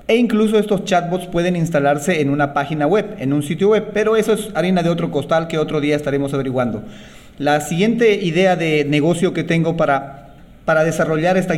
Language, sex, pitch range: Spanish, male, 150-190 Hz